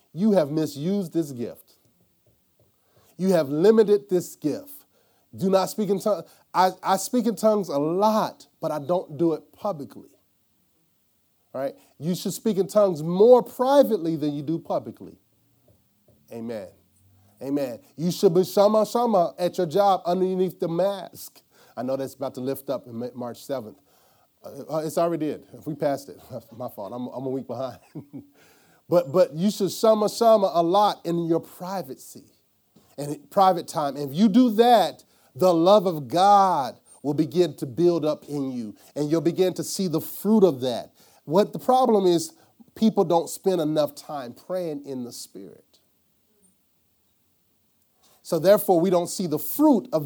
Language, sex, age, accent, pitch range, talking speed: English, male, 30-49, American, 145-195 Hz, 165 wpm